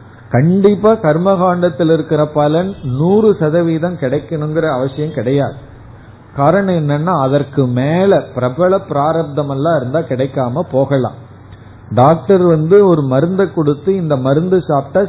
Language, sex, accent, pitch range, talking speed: Tamil, male, native, 120-165 Hz, 100 wpm